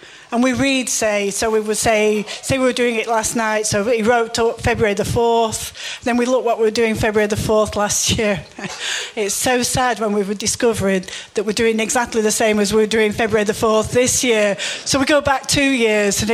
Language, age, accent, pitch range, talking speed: English, 40-59, British, 215-265 Hz, 230 wpm